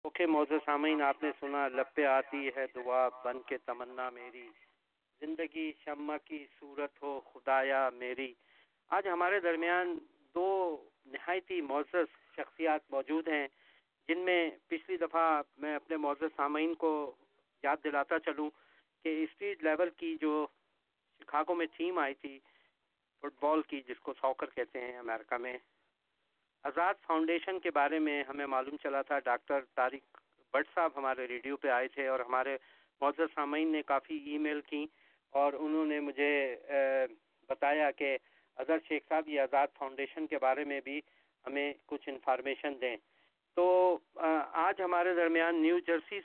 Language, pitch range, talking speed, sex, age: English, 135-165 Hz, 130 wpm, male, 40-59